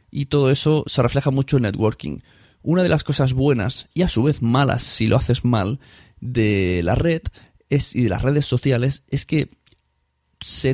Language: Spanish